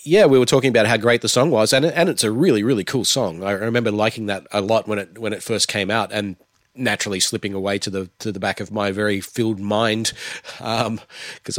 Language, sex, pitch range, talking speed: English, male, 100-125 Hz, 240 wpm